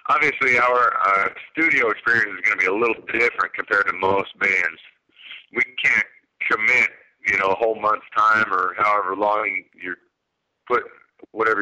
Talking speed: 160 wpm